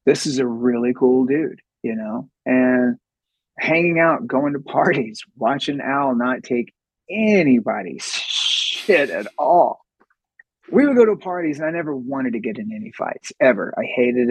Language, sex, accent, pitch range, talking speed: English, male, American, 130-190 Hz, 165 wpm